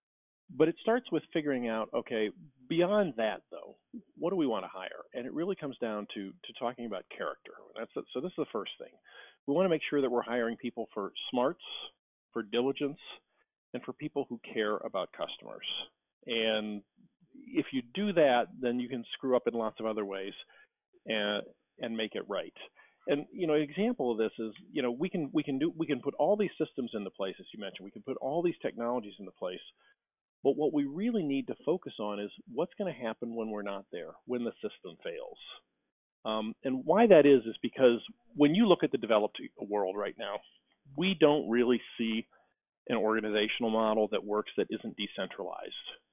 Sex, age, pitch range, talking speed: male, 40-59, 110-150 Hz, 205 wpm